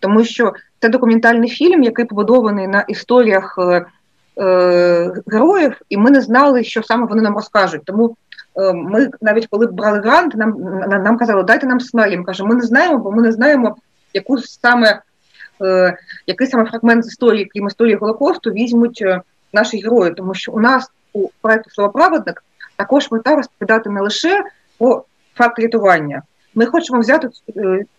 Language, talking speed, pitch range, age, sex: Ukrainian, 160 wpm, 195-240 Hz, 30-49, female